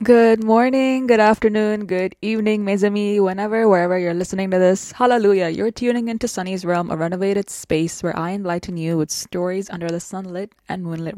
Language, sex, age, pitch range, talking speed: English, female, 20-39, 165-205 Hz, 175 wpm